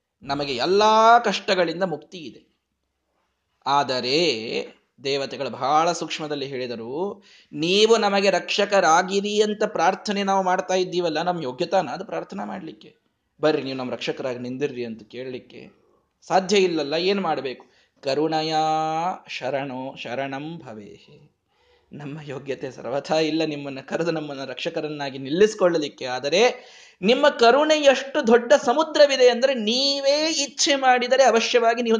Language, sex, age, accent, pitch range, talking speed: Kannada, male, 20-39, native, 155-255 Hz, 110 wpm